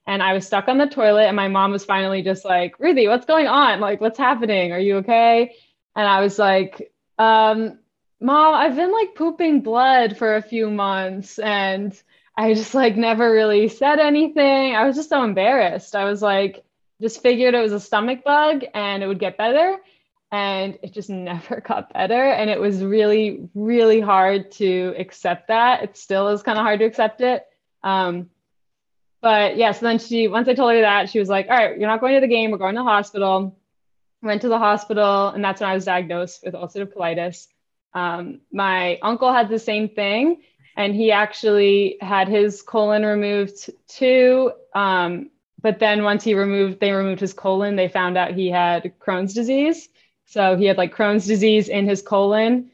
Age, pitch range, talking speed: 10-29, 195-235 Hz, 195 wpm